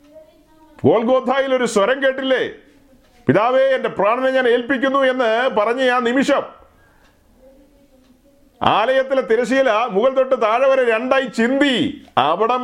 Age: 40-59